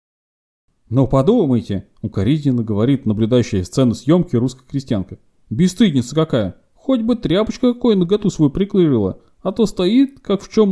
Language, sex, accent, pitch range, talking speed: Russian, male, native, 125-190 Hz, 135 wpm